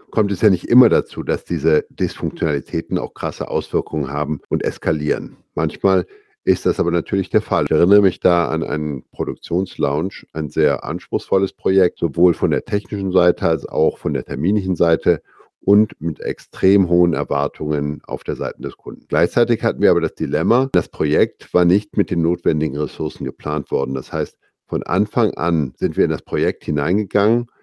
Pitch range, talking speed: 80-100 Hz, 175 wpm